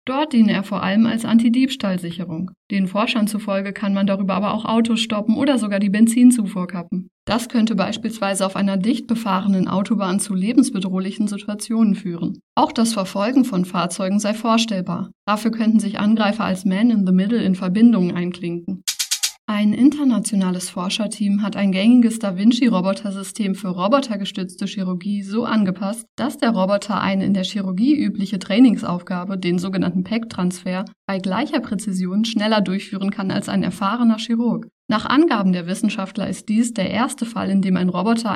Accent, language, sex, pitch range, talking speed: German, German, female, 190-225 Hz, 160 wpm